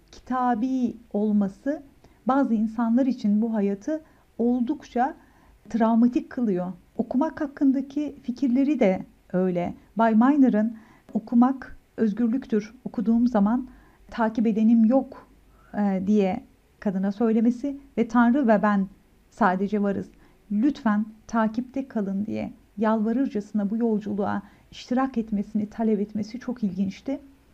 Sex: female